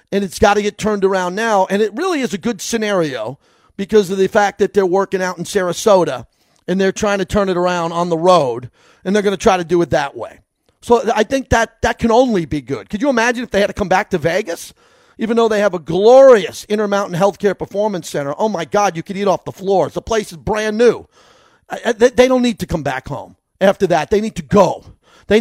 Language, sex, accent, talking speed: English, male, American, 245 wpm